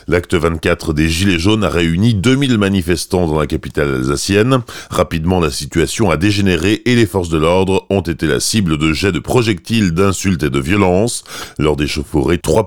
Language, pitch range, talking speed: French, 90-125 Hz, 185 wpm